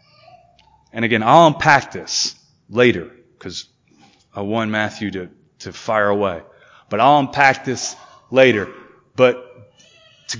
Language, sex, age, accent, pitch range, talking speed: English, male, 30-49, American, 115-155 Hz, 120 wpm